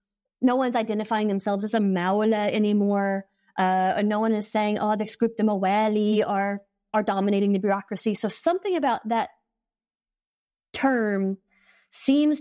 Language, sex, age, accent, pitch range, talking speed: English, female, 30-49, American, 195-230 Hz, 140 wpm